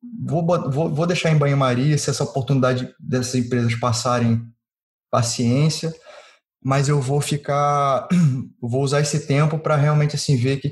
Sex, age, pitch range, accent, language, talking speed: male, 20-39, 125-160 Hz, Brazilian, Portuguese, 155 wpm